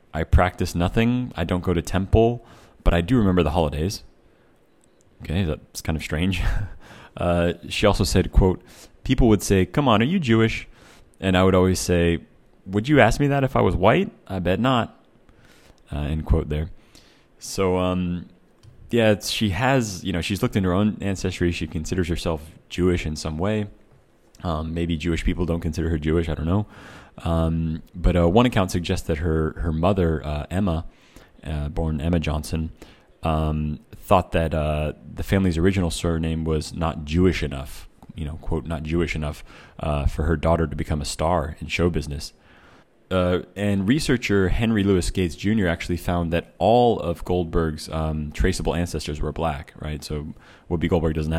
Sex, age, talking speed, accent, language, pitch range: male, 30-49, 175 wpm, American, English, 80-95 Hz